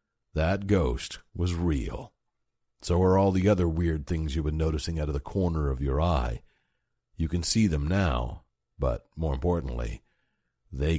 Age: 50-69